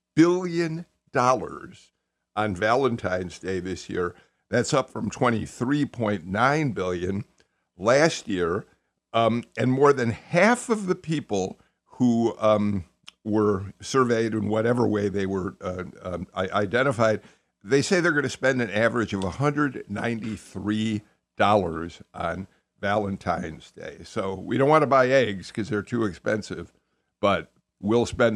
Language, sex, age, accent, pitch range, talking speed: English, male, 50-69, American, 100-135 Hz, 130 wpm